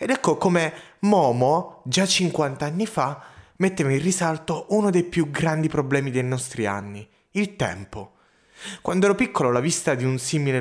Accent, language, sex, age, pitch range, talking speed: native, Italian, male, 30-49, 130-180 Hz, 165 wpm